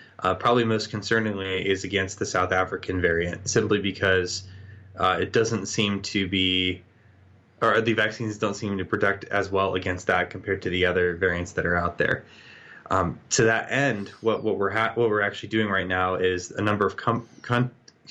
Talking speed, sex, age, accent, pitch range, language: 190 wpm, male, 20-39, American, 95-110 Hz, English